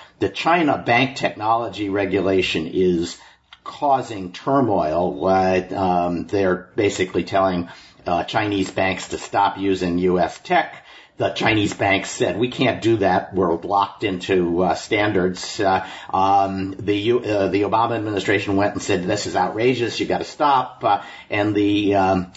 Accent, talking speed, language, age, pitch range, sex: American, 150 wpm, English, 50-69, 95-110 Hz, male